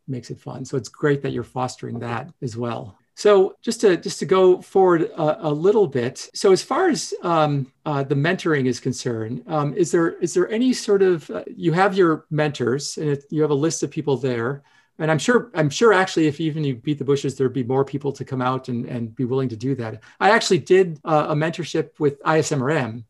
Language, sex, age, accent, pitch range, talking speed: English, male, 40-59, American, 125-165 Hz, 230 wpm